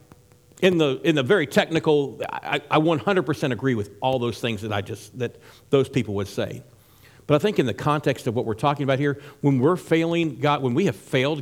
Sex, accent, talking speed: male, American, 220 wpm